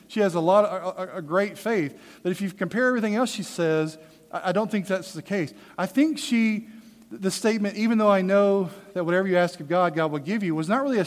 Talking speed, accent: 255 wpm, American